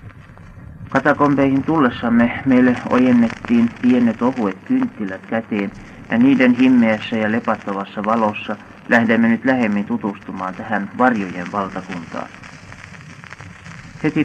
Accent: native